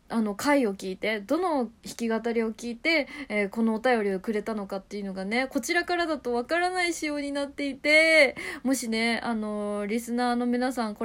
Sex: female